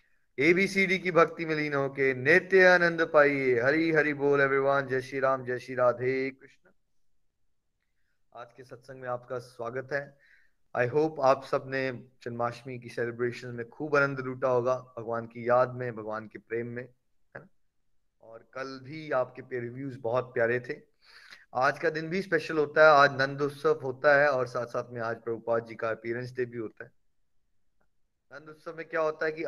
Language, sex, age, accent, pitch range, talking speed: Hindi, male, 20-39, native, 120-140 Hz, 110 wpm